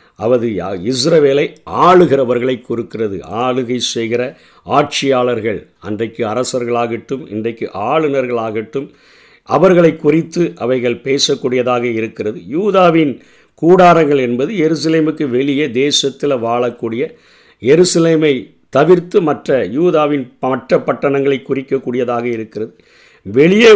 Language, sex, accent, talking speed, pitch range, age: Tamil, male, native, 85 wpm, 125-165 Hz, 50-69